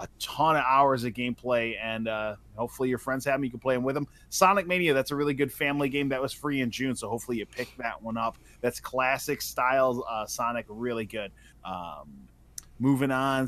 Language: English